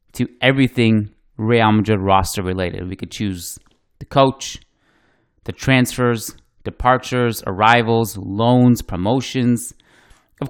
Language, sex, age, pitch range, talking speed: English, male, 30-49, 100-125 Hz, 105 wpm